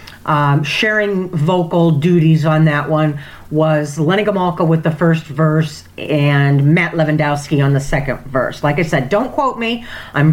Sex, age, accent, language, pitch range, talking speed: female, 40-59, American, English, 150-220 Hz, 165 wpm